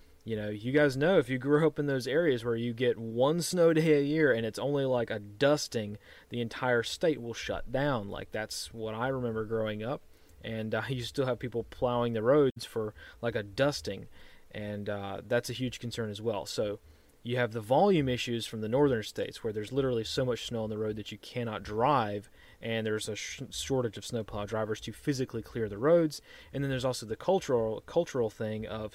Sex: male